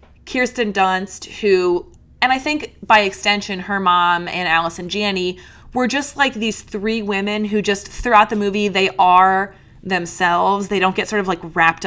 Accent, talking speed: American, 175 wpm